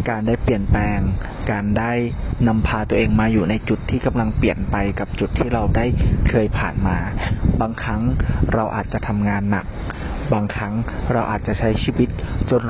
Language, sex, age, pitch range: Thai, male, 30-49, 100-115 Hz